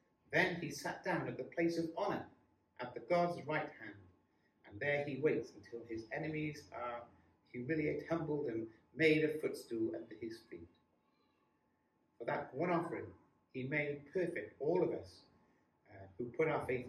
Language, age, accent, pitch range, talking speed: English, 50-69, British, 120-170 Hz, 165 wpm